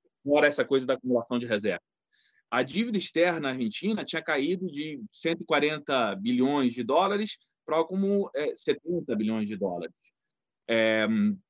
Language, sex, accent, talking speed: Portuguese, male, Brazilian, 135 wpm